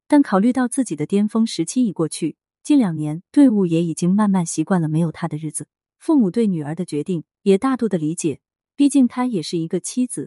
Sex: female